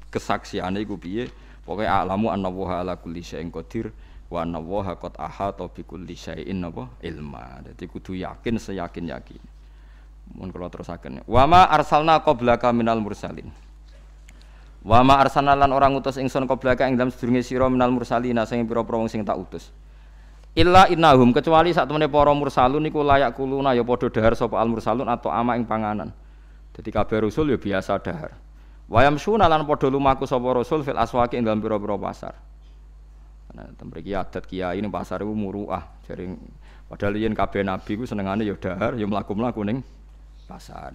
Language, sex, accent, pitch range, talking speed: Indonesian, male, native, 90-125 Hz, 165 wpm